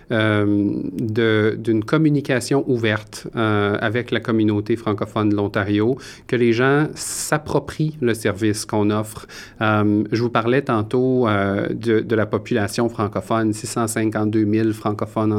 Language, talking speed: French, 135 wpm